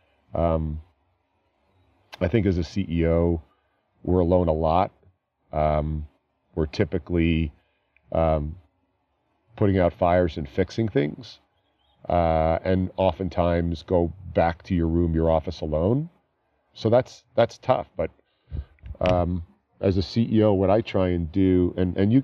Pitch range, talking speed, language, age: 80-90 Hz, 130 wpm, English, 40-59